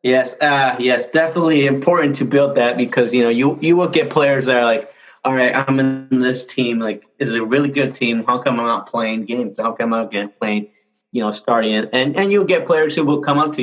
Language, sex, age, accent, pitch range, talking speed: English, male, 20-39, American, 105-130 Hz, 245 wpm